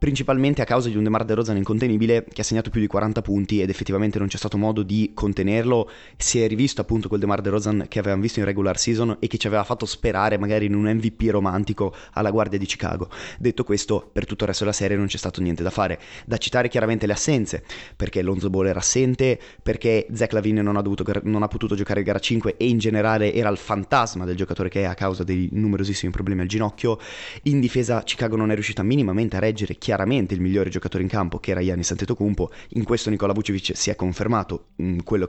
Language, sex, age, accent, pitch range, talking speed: Italian, male, 20-39, native, 100-120 Hz, 220 wpm